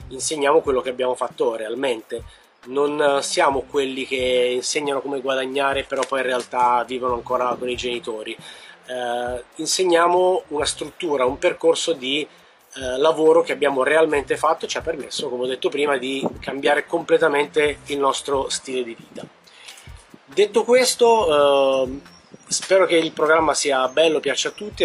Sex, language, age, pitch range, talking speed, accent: male, Italian, 30-49, 130-170 Hz, 150 wpm, native